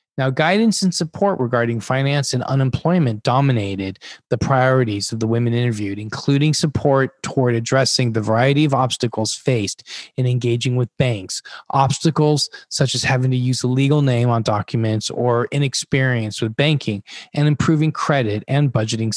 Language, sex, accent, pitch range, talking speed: English, male, American, 115-145 Hz, 150 wpm